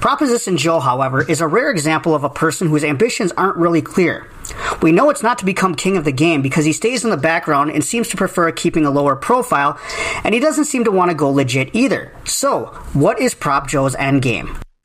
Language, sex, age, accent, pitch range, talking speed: English, male, 40-59, American, 145-205 Hz, 220 wpm